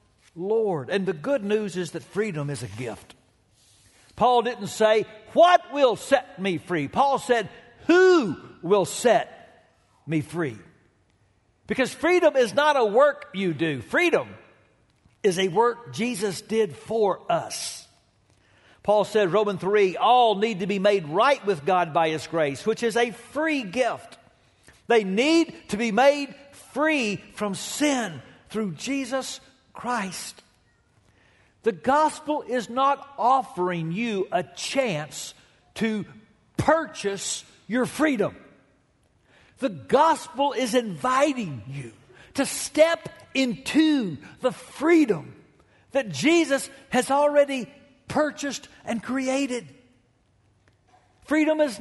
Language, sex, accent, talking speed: English, male, American, 120 wpm